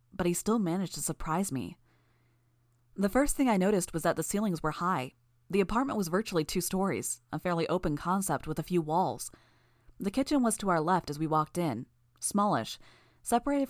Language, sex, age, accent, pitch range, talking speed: English, female, 30-49, American, 150-190 Hz, 195 wpm